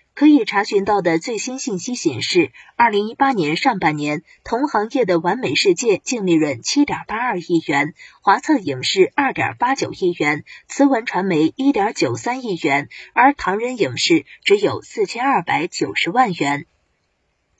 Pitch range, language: 190-305 Hz, Chinese